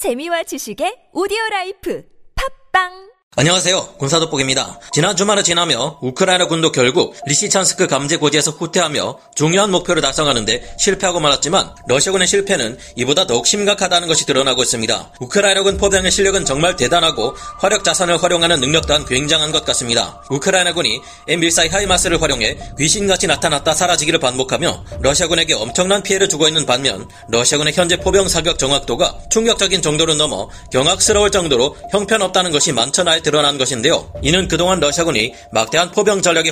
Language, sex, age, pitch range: Korean, male, 30-49, 145-190 Hz